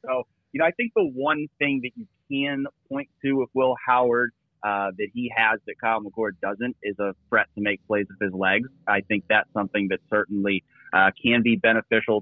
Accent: American